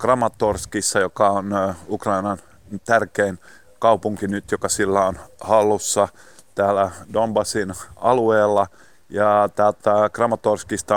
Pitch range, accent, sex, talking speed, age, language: 95-105 Hz, native, male, 95 wpm, 30-49, Finnish